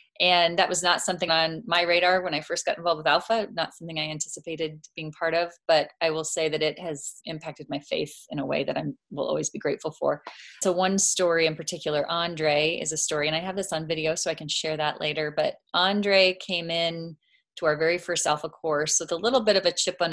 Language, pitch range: English, 150-175 Hz